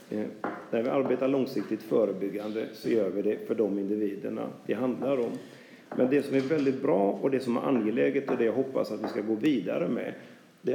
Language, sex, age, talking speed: Swedish, male, 40-59, 205 wpm